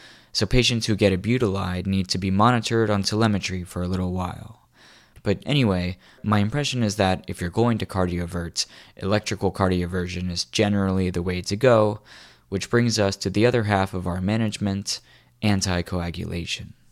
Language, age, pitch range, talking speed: English, 20-39, 90-110 Hz, 165 wpm